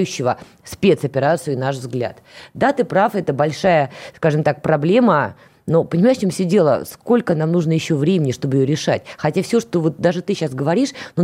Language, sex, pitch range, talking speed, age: Russian, female, 150-220 Hz, 180 wpm, 20-39